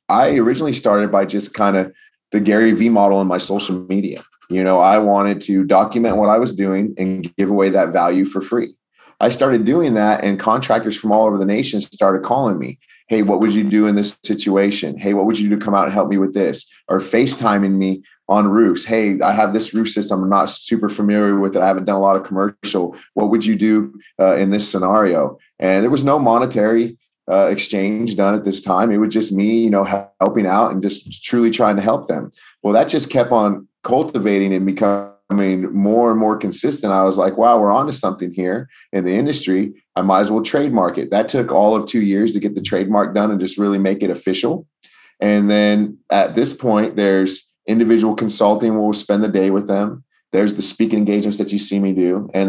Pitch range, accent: 95-110 Hz, American